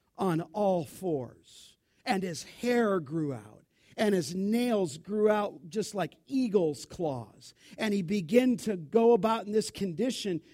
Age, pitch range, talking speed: 50-69, 165-225 Hz, 150 wpm